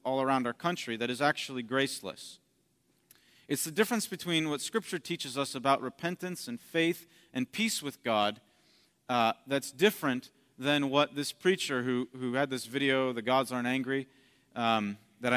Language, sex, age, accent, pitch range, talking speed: English, male, 40-59, American, 130-180 Hz, 165 wpm